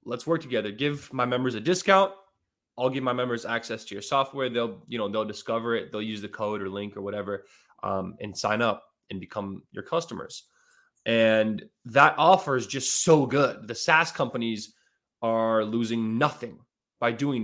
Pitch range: 110-140 Hz